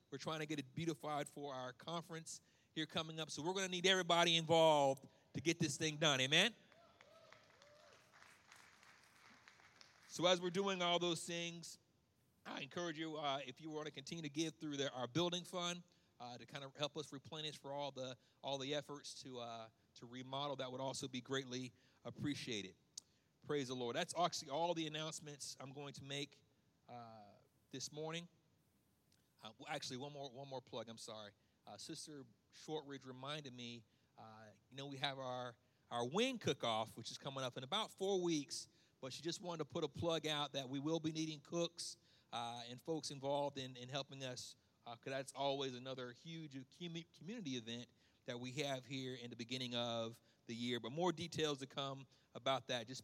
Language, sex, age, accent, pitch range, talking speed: English, male, 40-59, American, 125-160 Hz, 190 wpm